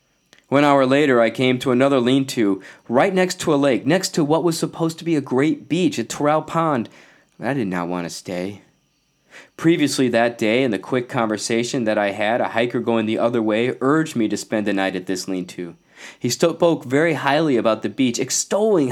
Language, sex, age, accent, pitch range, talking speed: English, male, 20-39, American, 120-175 Hz, 205 wpm